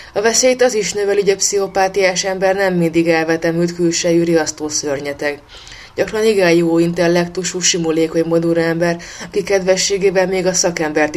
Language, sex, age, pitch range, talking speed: Hungarian, female, 20-39, 170-195 Hz, 135 wpm